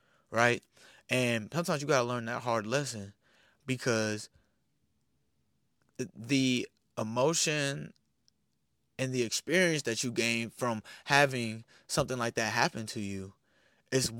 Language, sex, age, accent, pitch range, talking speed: English, male, 20-39, American, 115-140 Hz, 120 wpm